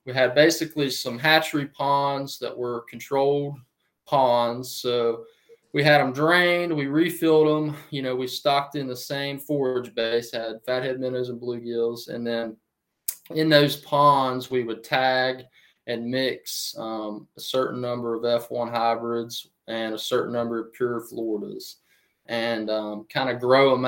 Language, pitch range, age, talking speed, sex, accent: English, 115-145 Hz, 20-39, 155 wpm, male, American